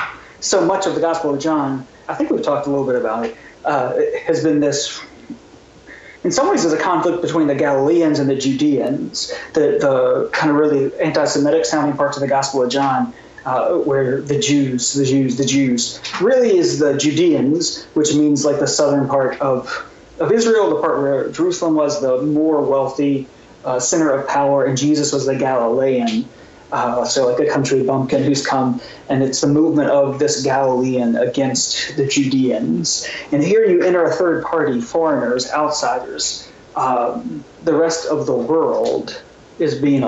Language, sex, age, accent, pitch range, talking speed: English, male, 30-49, American, 135-205 Hz, 175 wpm